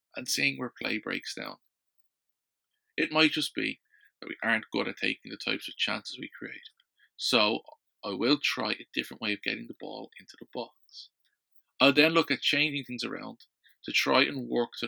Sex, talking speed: male, 195 wpm